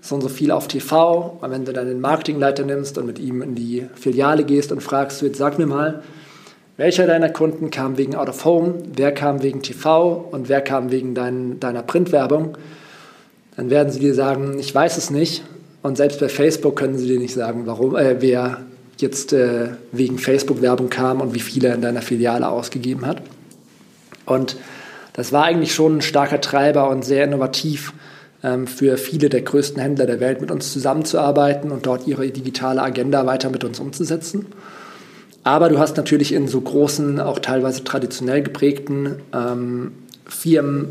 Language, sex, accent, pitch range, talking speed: German, male, German, 130-150 Hz, 175 wpm